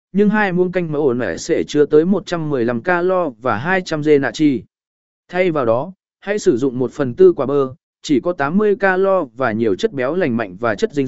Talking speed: 220 wpm